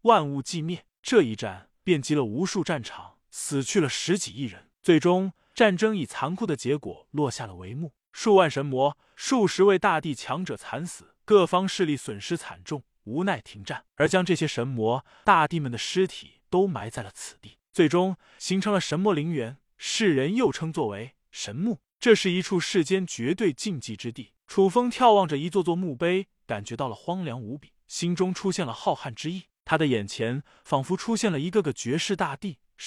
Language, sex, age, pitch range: Chinese, male, 20-39, 135-190 Hz